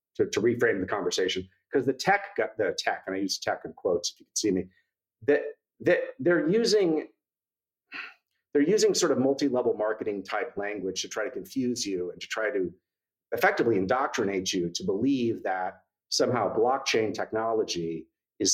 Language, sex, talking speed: English, male, 170 wpm